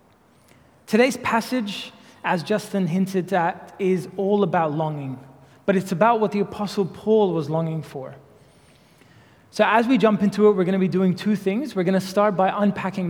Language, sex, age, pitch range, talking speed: English, male, 20-39, 165-205 Hz, 180 wpm